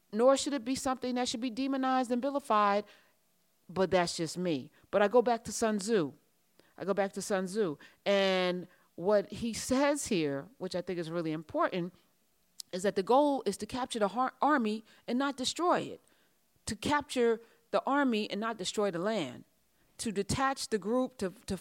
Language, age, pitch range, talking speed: English, 40-59, 175-250 Hz, 185 wpm